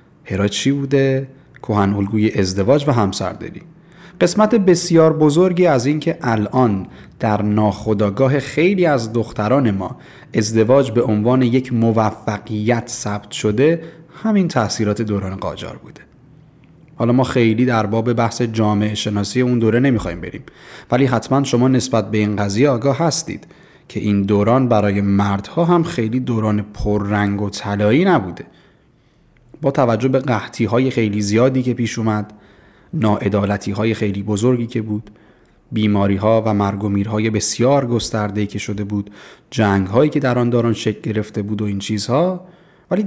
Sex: male